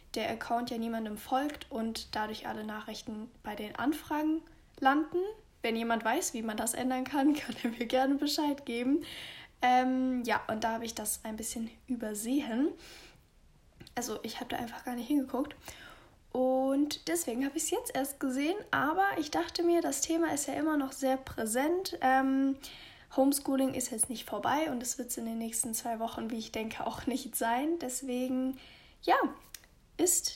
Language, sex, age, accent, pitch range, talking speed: German, female, 10-29, German, 235-280 Hz, 175 wpm